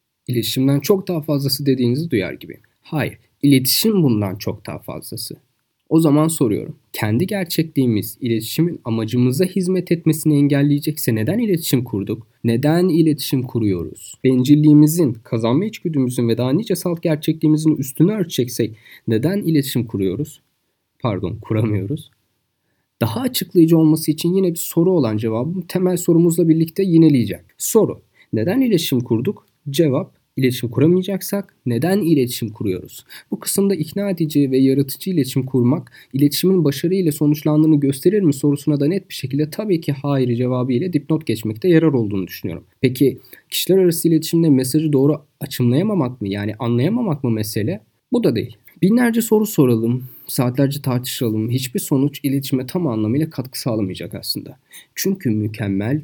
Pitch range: 120-165 Hz